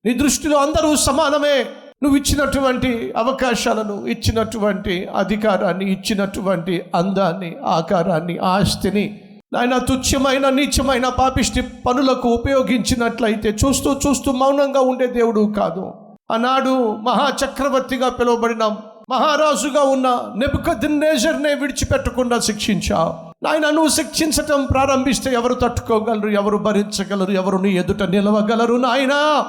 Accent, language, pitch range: native, Telugu, 205-280 Hz